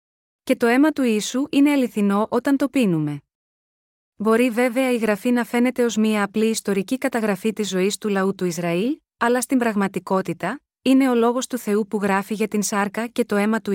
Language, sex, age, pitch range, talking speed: Greek, female, 20-39, 205-245 Hz, 190 wpm